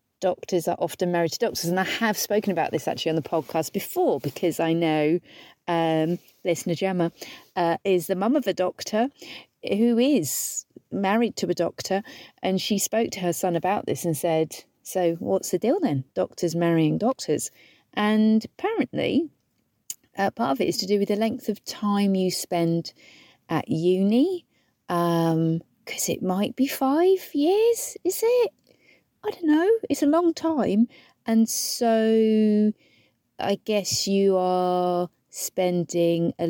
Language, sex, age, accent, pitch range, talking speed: English, female, 40-59, British, 175-240 Hz, 160 wpm